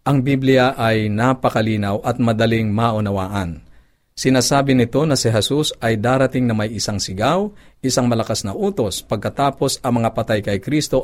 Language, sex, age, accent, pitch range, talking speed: Filipino, male, 50-69, native, 105-135 Hz, 150 wpm